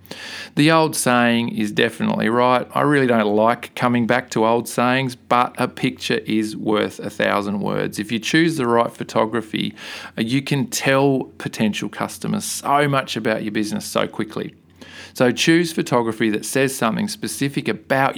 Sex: male